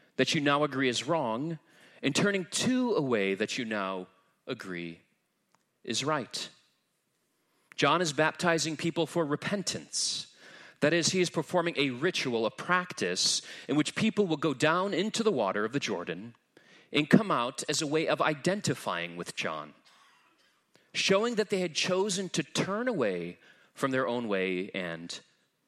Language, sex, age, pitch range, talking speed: English, male, 30-49, 120-180 Hz, 155 wpm